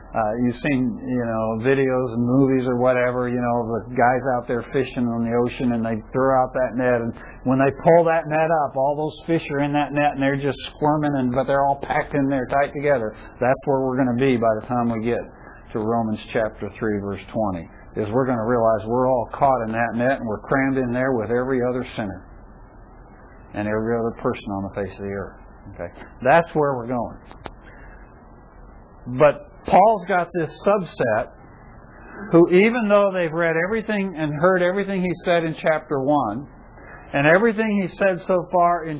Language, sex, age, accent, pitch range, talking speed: English, male, 60-79, American, 120-165 Hz, 200 wpm